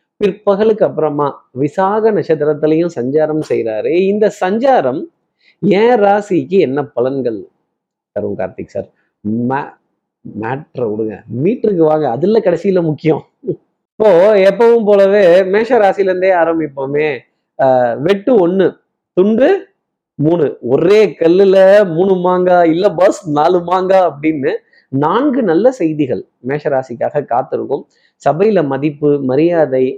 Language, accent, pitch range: Tamil, native, 145-205 Hz